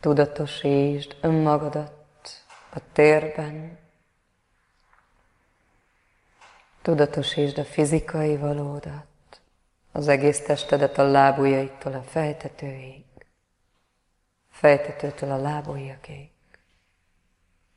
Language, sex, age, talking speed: Hungarian, female, 30-49, 60 wpm